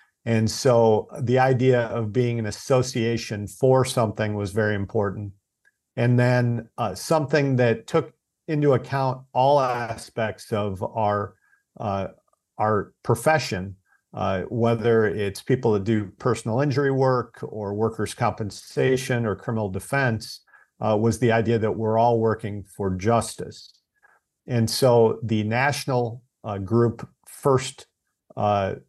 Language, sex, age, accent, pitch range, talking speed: English, male, 50-69, American, 105-125 Hz, 125 wpm